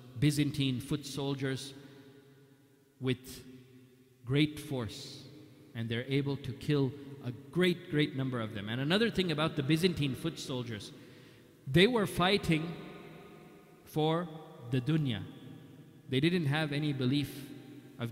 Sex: male